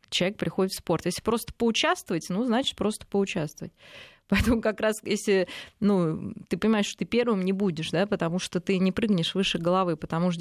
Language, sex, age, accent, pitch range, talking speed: Russian, female, 20-39, native, 175-220 Hz, 190 wpm